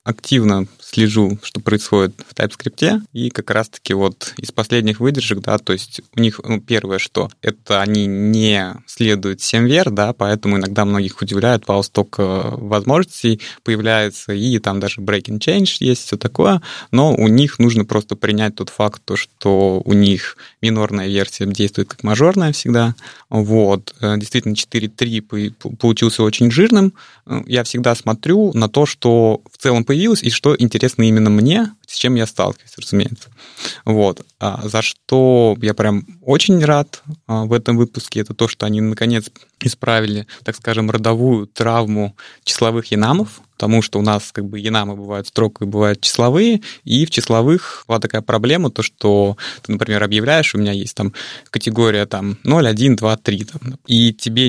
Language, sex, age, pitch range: Russian, male, 20-39, 105-125 Hz